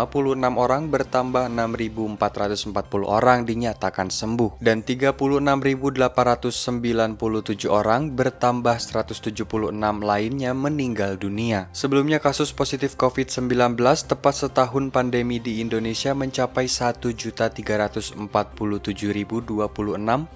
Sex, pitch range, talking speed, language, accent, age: male, 110-135 Hz, 75 wpm, Indonesian, native, 20-39